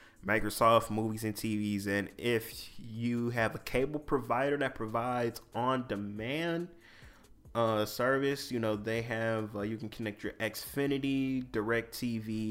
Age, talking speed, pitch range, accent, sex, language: 20-39, 140 wpm, 100-115 Hz, American, male, English